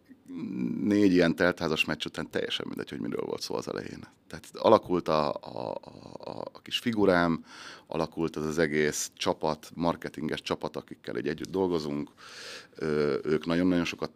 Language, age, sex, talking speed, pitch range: Hungarian, 30-49, male, 150 wpm, 75-85 Hz